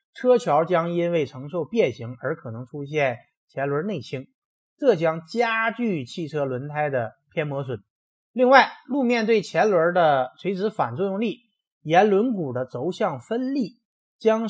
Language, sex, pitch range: Chinese, male, 135-215 Hz